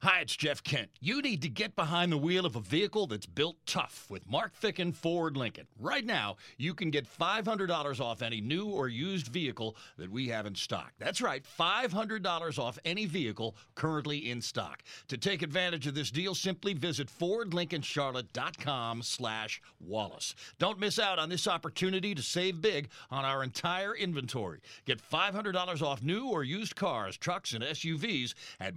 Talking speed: 175 wpm